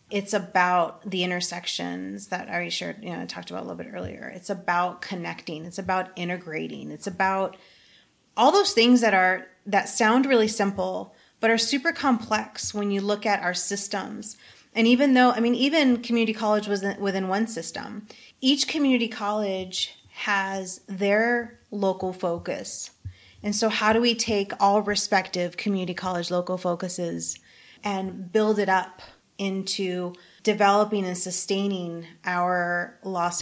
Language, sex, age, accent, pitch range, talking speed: English, female, 30-49, American, 180-220 Hz, 150 wpm